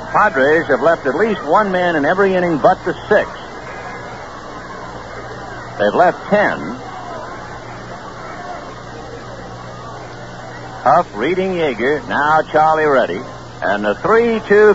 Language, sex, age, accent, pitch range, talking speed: English, male, 60-79, American, 130-190 Hz, 100 wpm